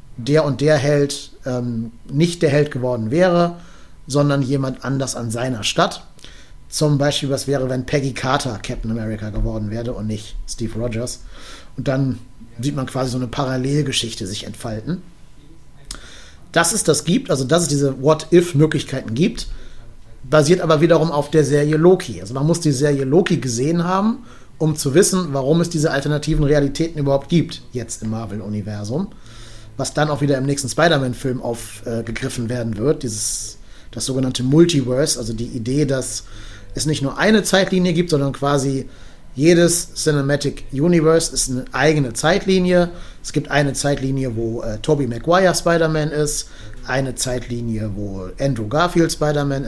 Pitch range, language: 120-155 Hz, German